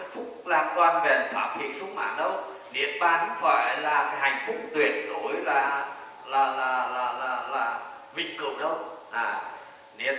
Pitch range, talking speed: 170-255 Hz, 175 wpm